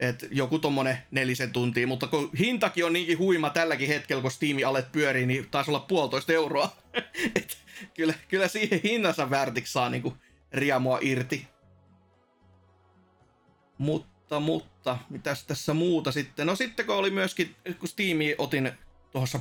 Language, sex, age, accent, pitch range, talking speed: Finnish, male, 30-49, native, 135-175 Hz, 145 wpm